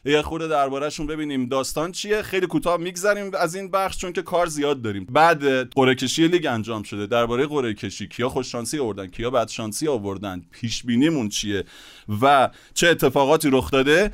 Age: 30-49